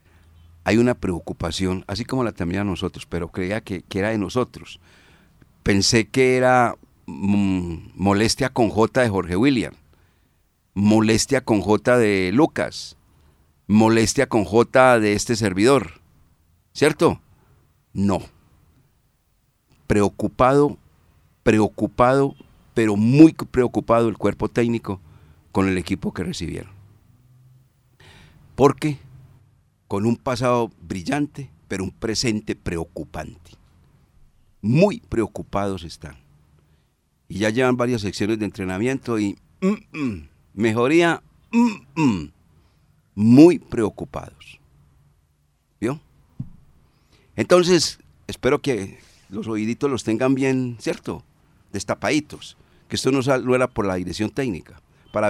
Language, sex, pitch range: Spanish, male, 90-125 Hz